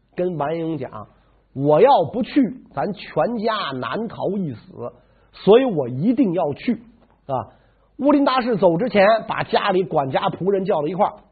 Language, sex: Chinese, male